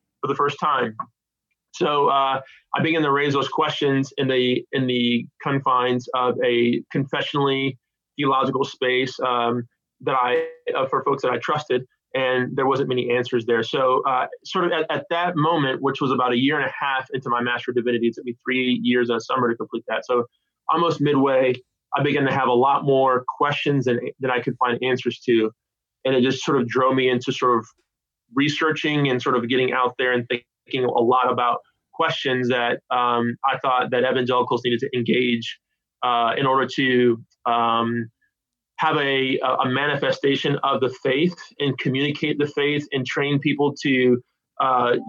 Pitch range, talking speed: 125-145 Hz, 185 wpm